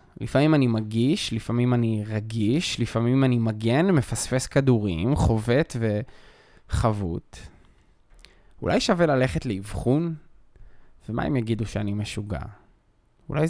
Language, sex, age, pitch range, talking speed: Hebrew, male, 20-39, 110-130 Hz, 100 wpm